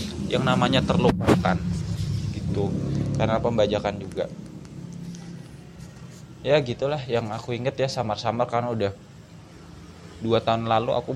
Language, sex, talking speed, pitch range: Indonesian, male, 110 wpm, 105-125 Hz